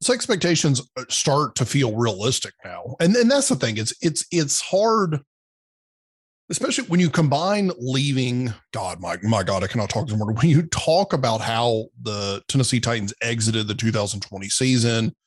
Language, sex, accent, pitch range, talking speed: English, male, American, 105-135 Hz, 160 wpm